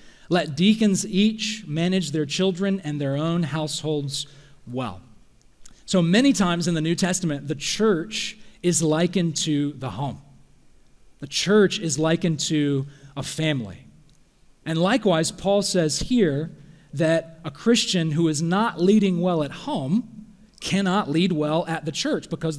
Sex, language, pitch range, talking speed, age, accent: male, English, 150-185 Hz, 145 wpm, 40-59, American